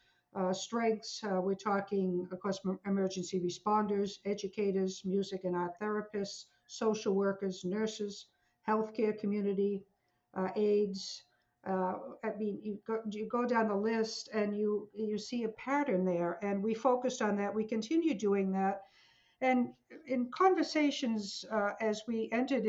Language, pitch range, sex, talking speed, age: English, 195-220 Hz, female, 145 wpm, 60-79